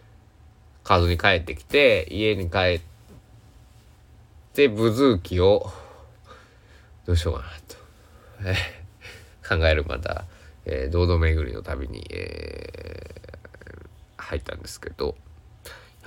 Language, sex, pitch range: Japanese, male, 85-110 Hz